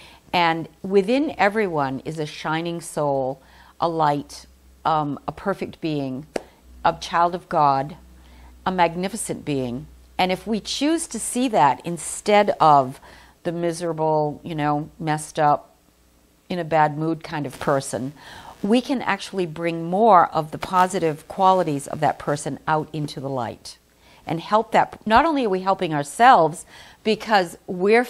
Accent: American